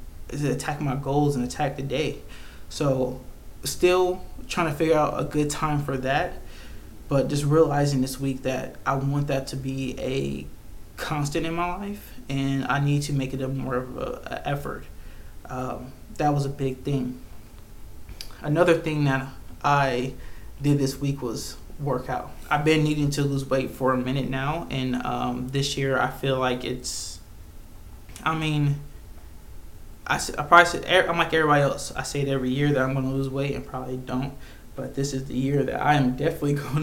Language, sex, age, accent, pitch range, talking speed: English, male, 20-39, American, 125-145 Hz, 180 wpm